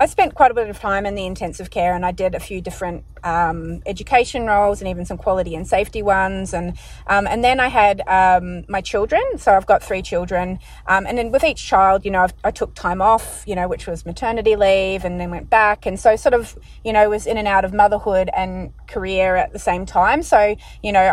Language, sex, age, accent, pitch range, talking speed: English, female, 30-49, Australian, 185-220 Hz, 240 wpm